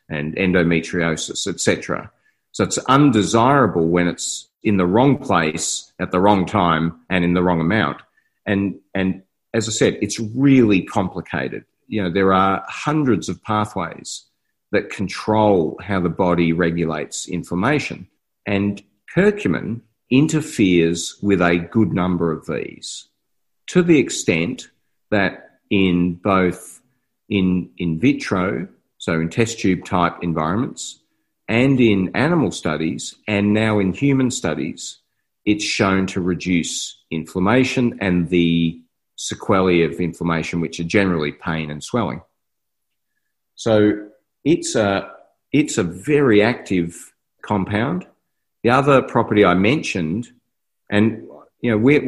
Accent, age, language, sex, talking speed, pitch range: Australian, 40-59, English, male, 125 wpm, 85-105 Hz